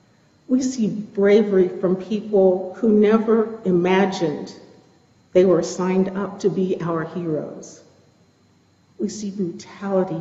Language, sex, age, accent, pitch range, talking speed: English, female, 50-69, American, 175-205 Hz, 110 wpm